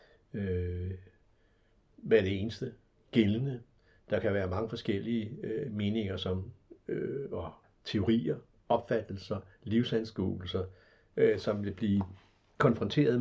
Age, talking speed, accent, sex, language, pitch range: 60-79, 85 wpm, native, male, Danish, 95-115 Hz